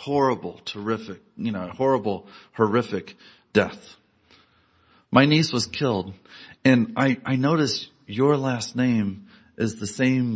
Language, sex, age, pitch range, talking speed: English, male, 40-59, 95-120 Hz, 120 wpm